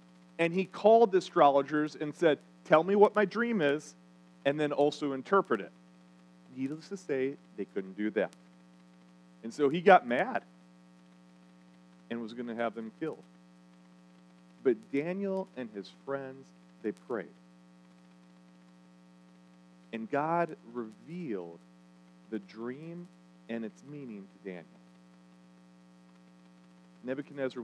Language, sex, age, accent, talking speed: English, male, 40-59, American, 120 wpm